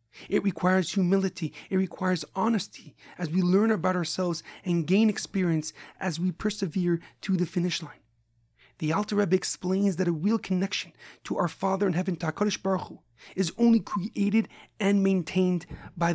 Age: 30-49